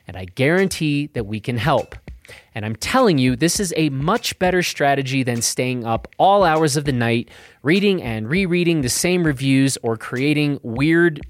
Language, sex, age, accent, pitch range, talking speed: English, male, 30-49, American, 115-165 Hz, 180 wpm